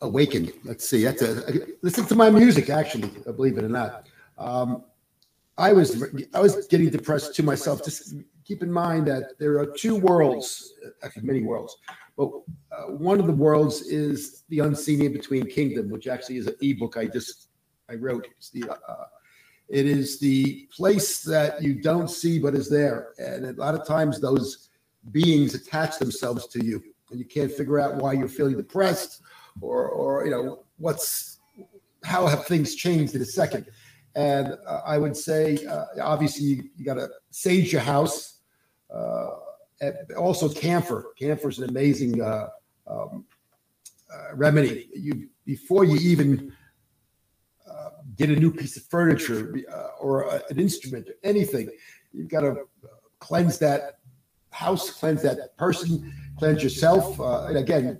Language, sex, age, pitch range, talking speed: English, male, 50-69, 140-175 Hz, 165 wpm